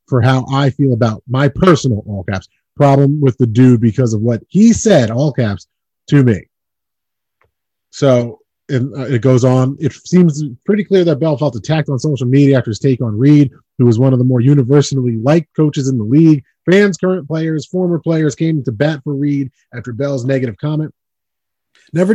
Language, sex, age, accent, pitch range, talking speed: English, male, 30-49, American, 120-150 Hz, 190 wpm